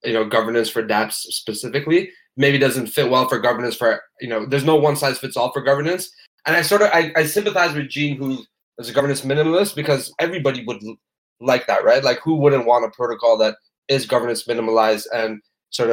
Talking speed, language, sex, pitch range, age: 205 wpm, English, male, 115-140 Hz, 20-39